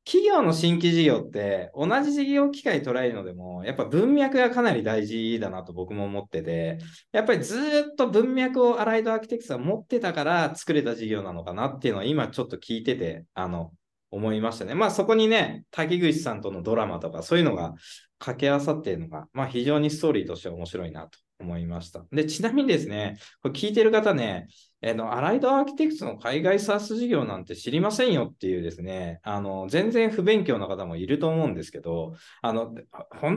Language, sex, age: Japanese, male, 20-39